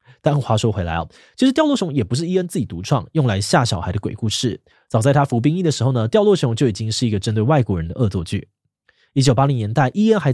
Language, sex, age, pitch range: Chinese, male, 20-39, 110-145 Hz